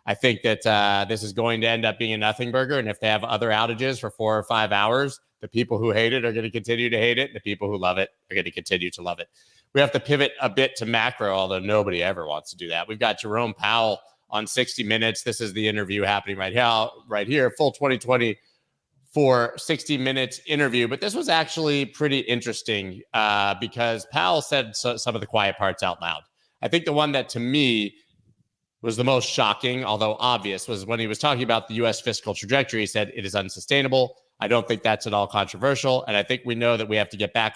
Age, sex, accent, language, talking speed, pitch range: 30-49, male, American, English, 240 wpm, 105-125 Hz